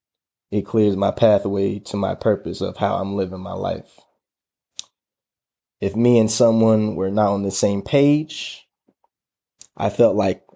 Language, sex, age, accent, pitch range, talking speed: English, male, 20-39, American, 105-125 Hz, 150 wpm